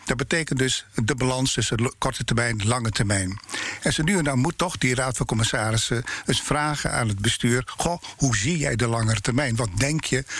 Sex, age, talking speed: male, 50-69, 215 wpm